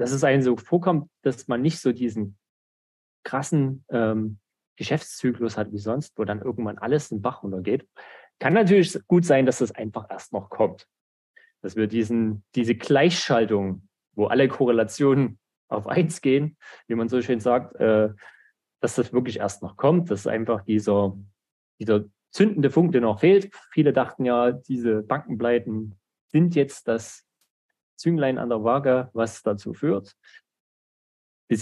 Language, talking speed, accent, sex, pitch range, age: German, 155 wpm, German, male, 110-135 Hz, 30-49